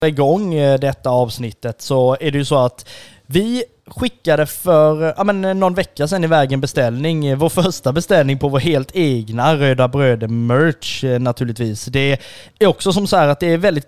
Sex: male